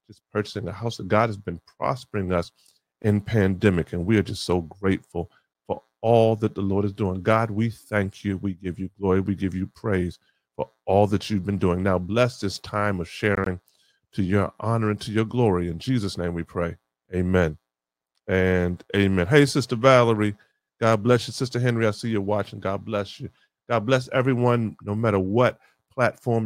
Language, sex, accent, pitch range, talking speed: English, male, American, 90-110 Hz, 195 wpm